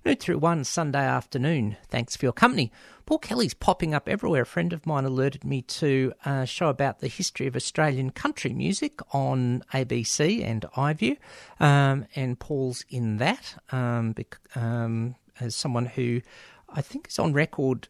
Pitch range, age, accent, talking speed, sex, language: 125-165 Hz, 50-69, Australian, 165 wpm, male, English